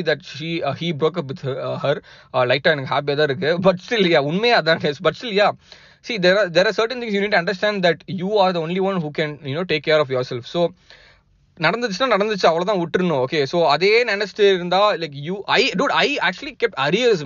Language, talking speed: Tamil, 230 wpm